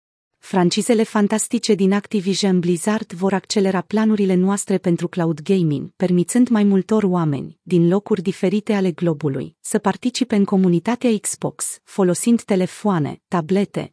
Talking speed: 125 wpm